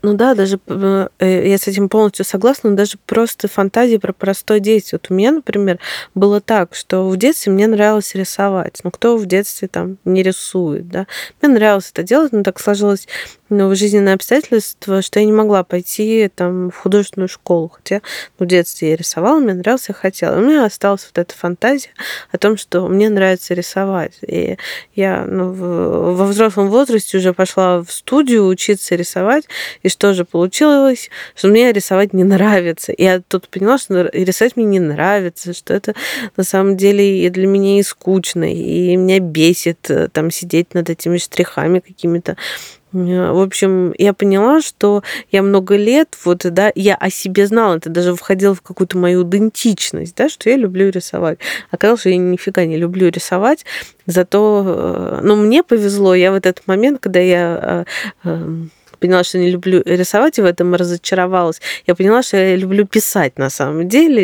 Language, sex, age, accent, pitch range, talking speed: Russian, female, 20-39, native, 180-210 Hz, 175 wpm